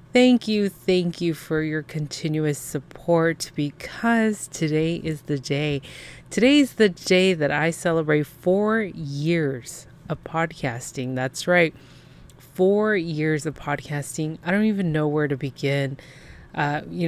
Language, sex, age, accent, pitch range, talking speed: English, female, 30-49, American, 145-175 Hz, 135 wpm